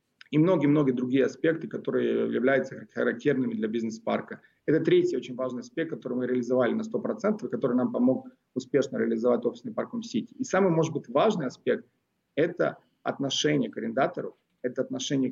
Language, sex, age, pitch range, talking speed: Russian, male, 30-49, 120-160 Hz, 155 wpm